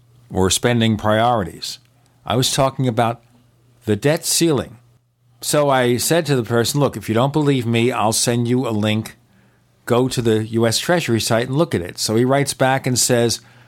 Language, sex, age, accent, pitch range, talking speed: English, male, 50-69, American, 115-145 Hz, 190 wpm